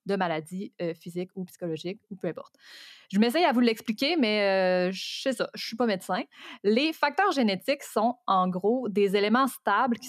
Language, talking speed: French, 195 wpm